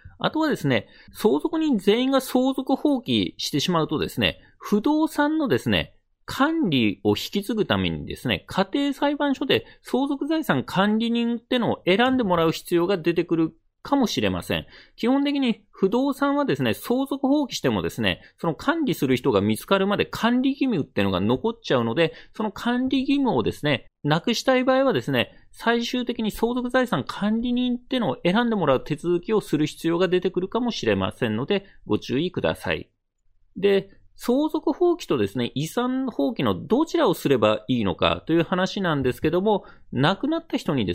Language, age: Japanese, 40-59